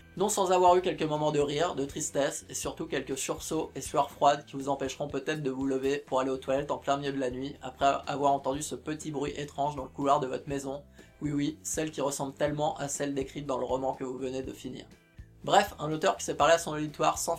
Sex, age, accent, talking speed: male, 20-39, French, 255 wpm